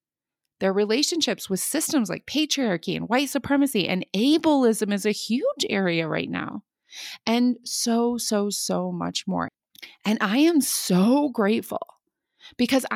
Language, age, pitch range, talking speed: English, 30-49, 200-265 Hz, 135 wpm